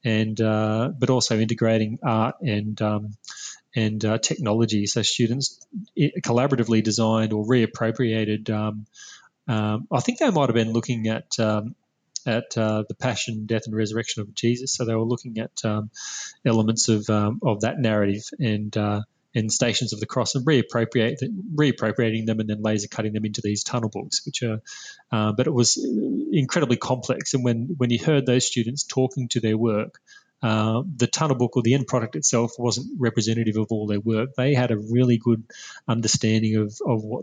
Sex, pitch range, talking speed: male, 110-125 Hz, 180 wpm